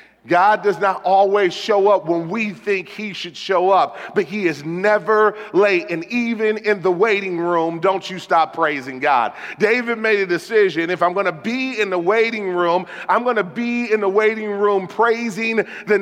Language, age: English, 40-59